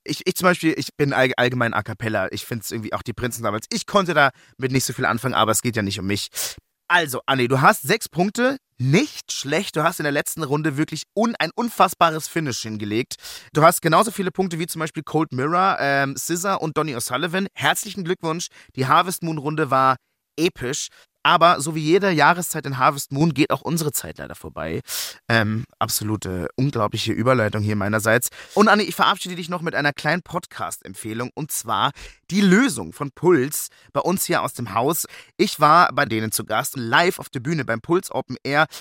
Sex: male